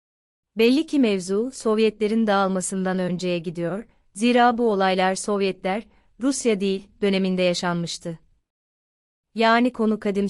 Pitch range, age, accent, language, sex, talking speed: 185-215 Hz, 30-49, native, Turkish, female, 105 wpm